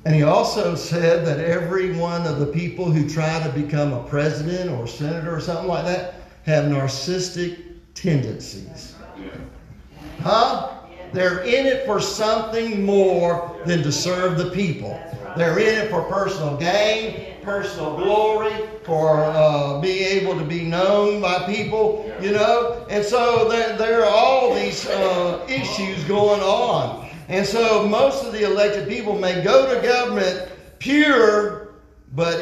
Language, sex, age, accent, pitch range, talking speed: English, male, 50-69, American, 145-195 Hz, 145 wpm